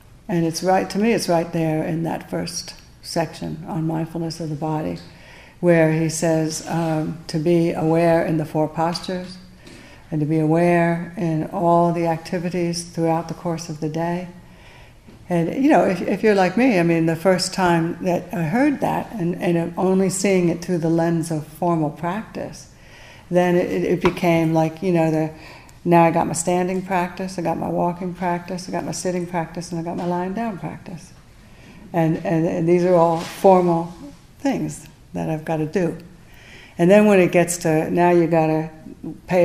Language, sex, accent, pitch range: English, female, American, 165-185 Hz